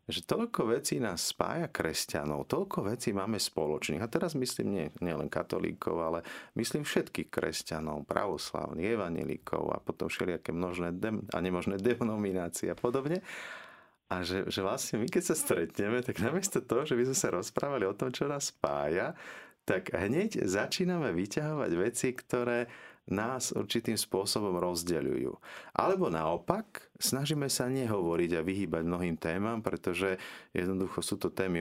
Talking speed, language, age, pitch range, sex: 150 wpm, Slovak, 40-59, 85-120 Hz, male